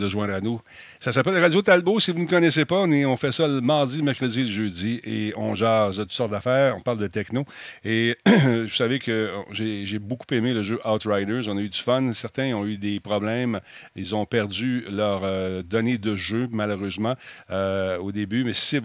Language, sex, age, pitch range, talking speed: French, male, 50-69, 105-130 Hz, 225 wpm